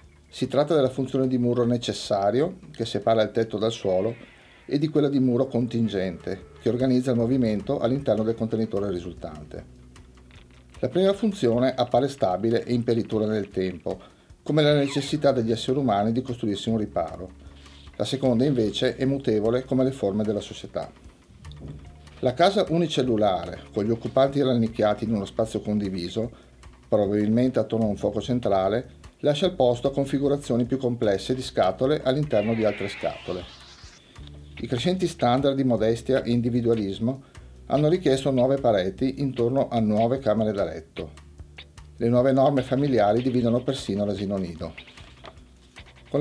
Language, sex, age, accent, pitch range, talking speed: Italian, male, 40-59, native, 100-130 Hz, 145 wpm